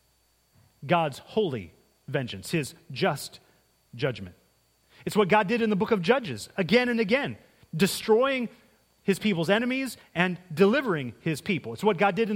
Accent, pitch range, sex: American, 125-205 Hz, male